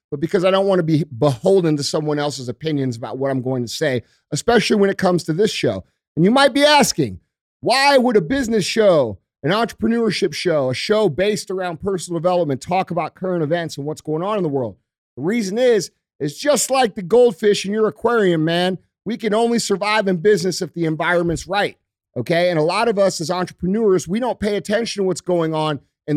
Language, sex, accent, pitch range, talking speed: English, male, American, 150-205 Hz, 215 wpm